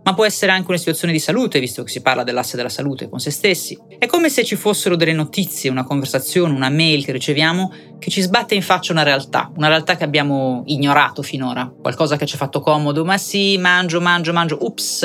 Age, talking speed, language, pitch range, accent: 30-49, 225 wpm, Italian, 140-185 Hz, native